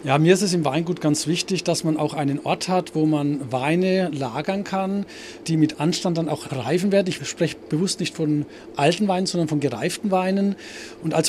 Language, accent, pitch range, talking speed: German, German, 145-175 Hz, 205 wpm